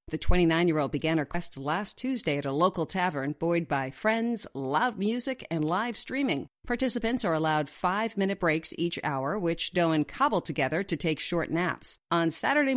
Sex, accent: female, American